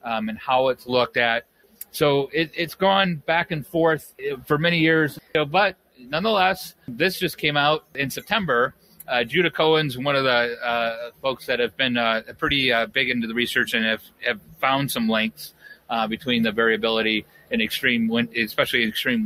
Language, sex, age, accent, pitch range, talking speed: English, male, 30-49, American, 120-155 Hz, 185 wpm